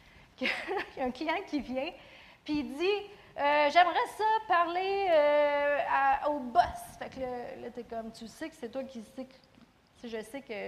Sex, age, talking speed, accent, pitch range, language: female, 40-59, 175 wpm, Canadian, 225-290 Hz, French